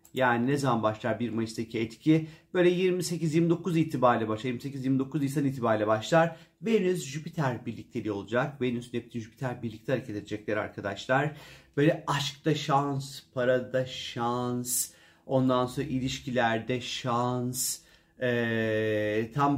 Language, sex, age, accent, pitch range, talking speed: Turkish, male, 40-59, native, 120-155 Hz, 115 wpm